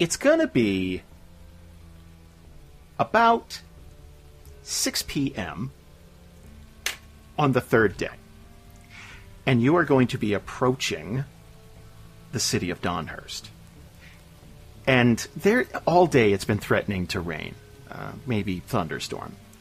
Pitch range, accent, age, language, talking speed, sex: 80-115 Hz, American, 40-59, English, 105 wpm, male